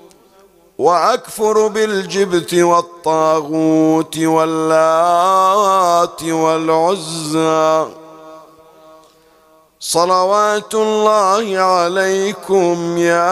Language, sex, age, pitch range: Arabic, male, 50-69, 160-210 Hz